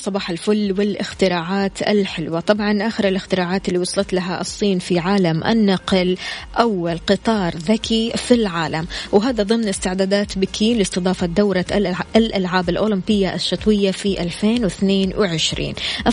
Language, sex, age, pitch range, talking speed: Arabic, female, 20-39, 180-210 Hz, 110 wpm